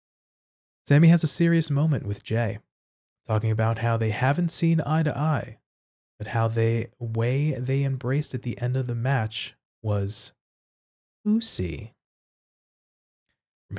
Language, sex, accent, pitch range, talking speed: English, male, American, 105-140 Hz, 130 wpm